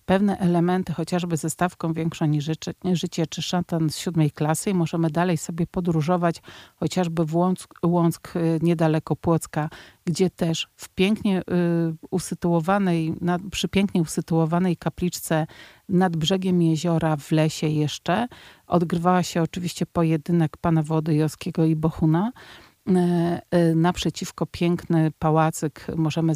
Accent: native